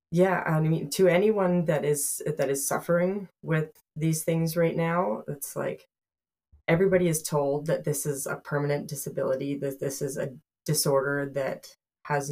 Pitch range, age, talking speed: 140-165 Hz, 20-39, 160 wpm